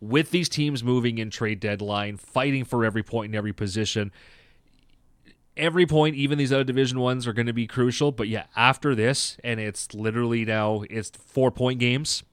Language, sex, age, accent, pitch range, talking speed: English, male, 30-49, American, 105-135 Hz, 185 wpm